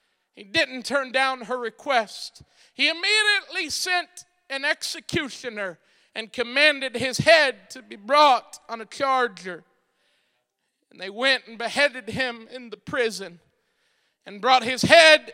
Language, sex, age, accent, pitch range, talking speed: English, male, 40-59, American, 240-345 Hz, 135 wpm